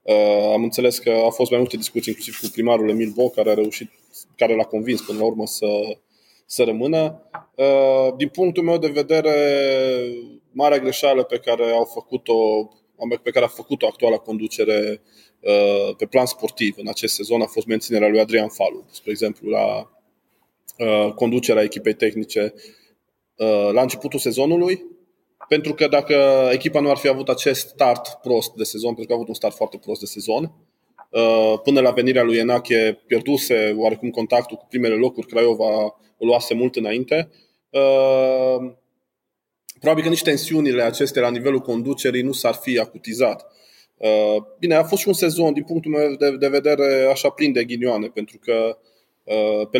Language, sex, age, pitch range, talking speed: Romanian, male, 20-39, 110-140 Hz, 165 wpm